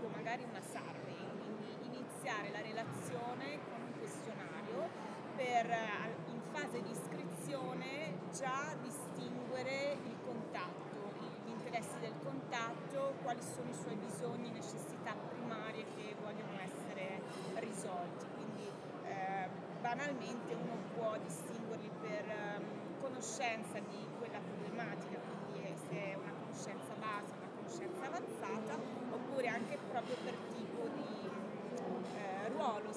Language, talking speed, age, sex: Italian, 115 wpm, 30-49, female